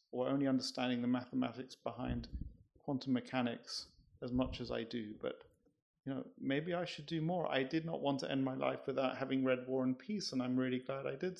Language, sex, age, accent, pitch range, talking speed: English, male, 40-59, British, 130-160 Hz, 215 wpm